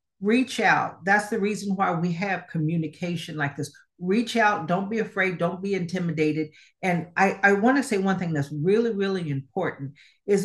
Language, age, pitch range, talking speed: English, 50-69, 150-200 Hz, 180 wpm